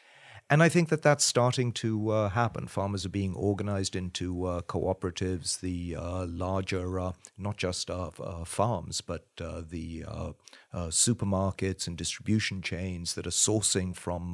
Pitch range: 90-110 Hz